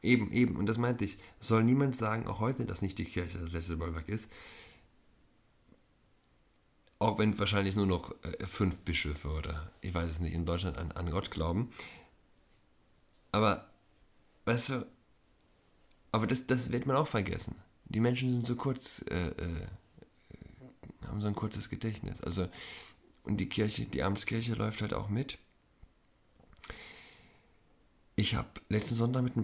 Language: German